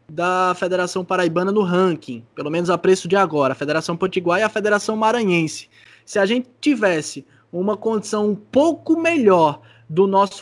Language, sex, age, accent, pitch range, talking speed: Portuguese, male, 20-39, Brazilian, 155-200 Hz, 165 wpm